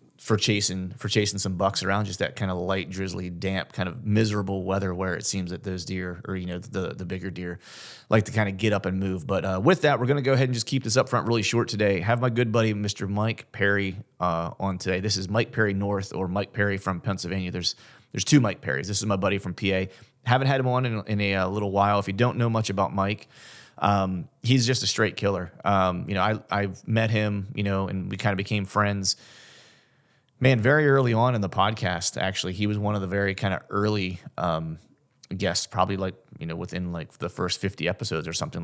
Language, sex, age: English, male, 30-49